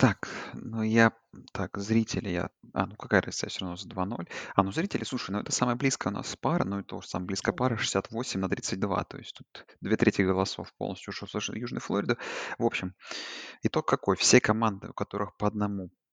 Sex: male